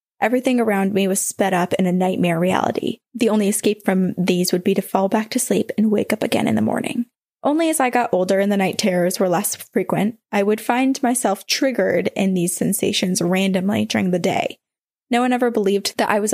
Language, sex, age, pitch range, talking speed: English, female, 20-39, 195-235 Hz, 220 wpm